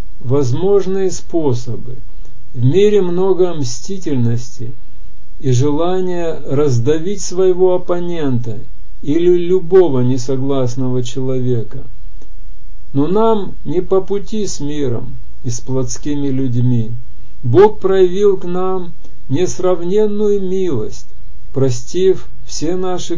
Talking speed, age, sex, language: 90 wpm, 50-69, male, Russian